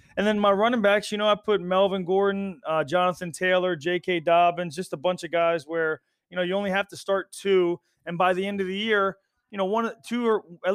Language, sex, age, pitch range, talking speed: English, male, 20-39, 160-190 Hz, 240 wpm